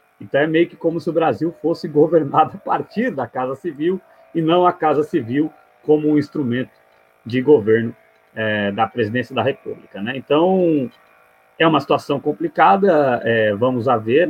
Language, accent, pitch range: Portuguese, Brazilian, 115-155 Hz